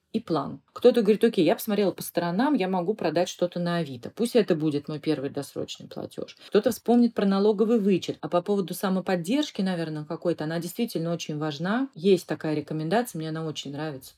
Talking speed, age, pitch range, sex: 185 wpm, 30-49, 160-215 Hz, female